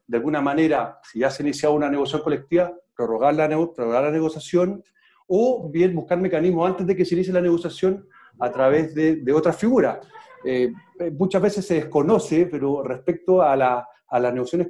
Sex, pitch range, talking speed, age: male, 150-185 Hz, 190 wpm, 40-59